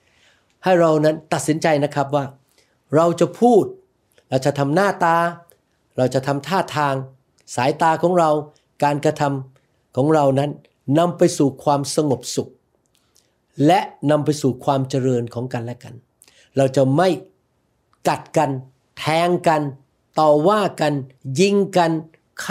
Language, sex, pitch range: Thai, male, 135-175 Hz